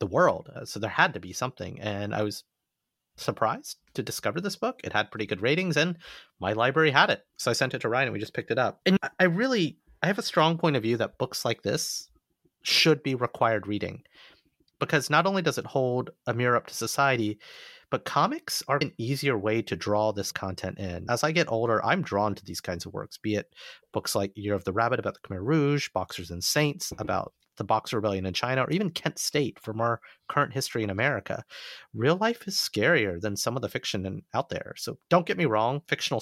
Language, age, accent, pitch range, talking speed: English, 30-49, American, 100-145 Hz, 230 wpm